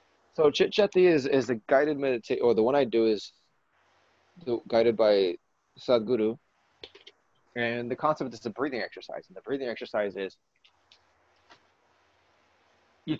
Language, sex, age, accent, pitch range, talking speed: English, male, 20-39, American, 110-145 Hz, 130 wpm